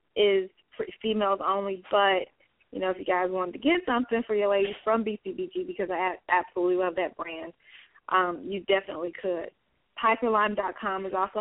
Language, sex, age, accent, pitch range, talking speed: English, female, 20-39, American, 185-210 Hz, 165 wpm